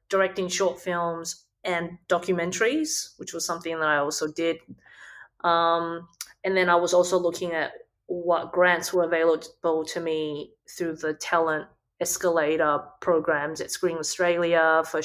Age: 20-39